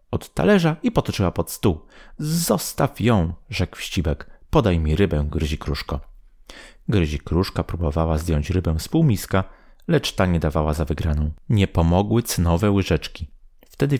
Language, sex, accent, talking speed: Polish, male, native, 140 wpm